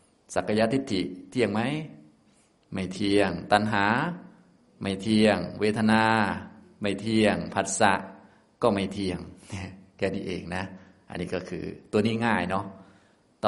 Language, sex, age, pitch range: Thai, male, 20-39, 95-120 Hz